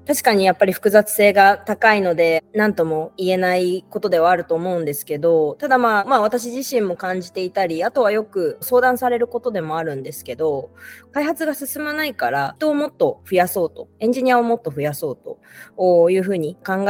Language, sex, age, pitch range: Japanese, female, 20-39, 160-235 Hz